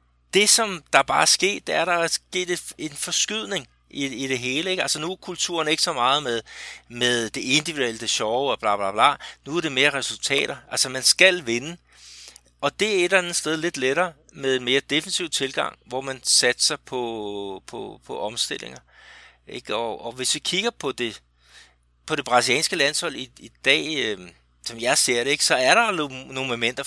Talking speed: 205 wpm